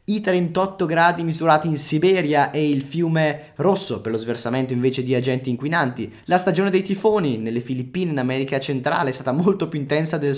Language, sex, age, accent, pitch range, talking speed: Italian, male, 20-39, native, 115-155 Hz, 185 wpm